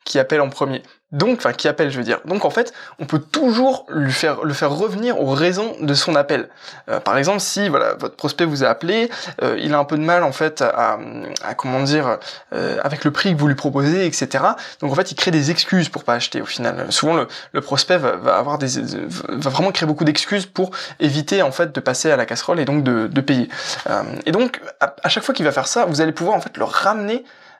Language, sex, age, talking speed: French, male, 20-39, 250 wpm